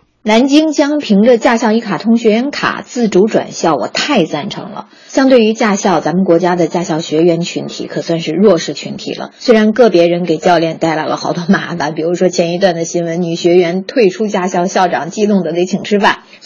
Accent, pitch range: native, 170-230 Hz